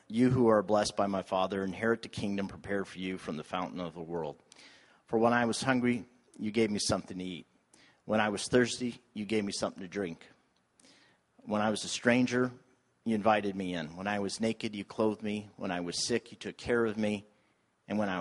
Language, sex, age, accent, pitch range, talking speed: English, male, 40-59, American, 95-115 Hz, 225 wpm